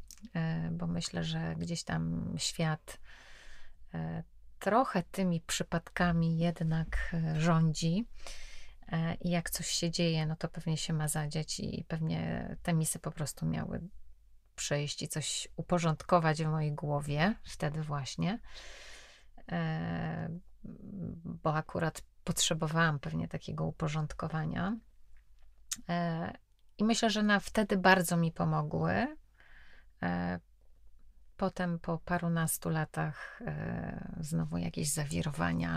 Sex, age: female, 30-49